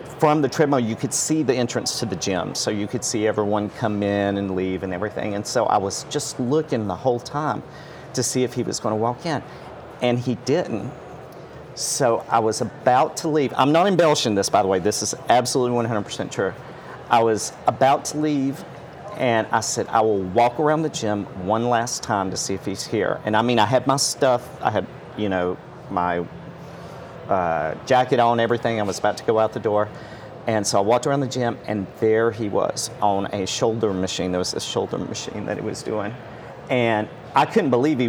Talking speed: 215 wpm